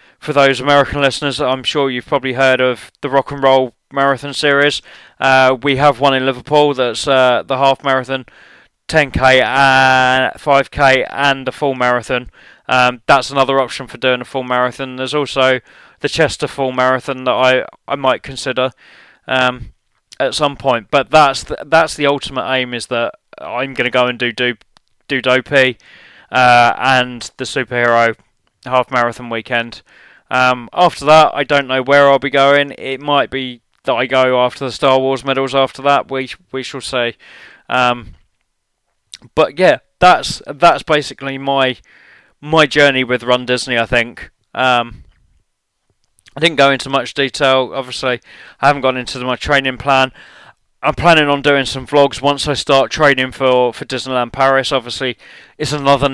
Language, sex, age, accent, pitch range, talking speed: English, male, 20-39, British, 125-140 Hz, 165 wpm